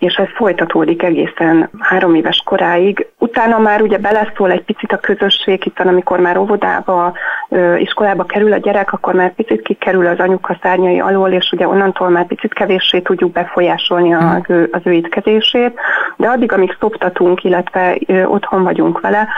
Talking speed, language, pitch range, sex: 155 wpm, Hungarian, 170-200 Hz, female